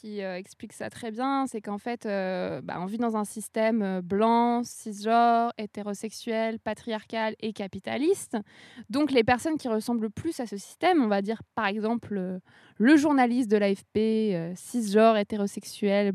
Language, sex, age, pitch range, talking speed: French, female, 20-39, 215-280 Hz, 165 wpm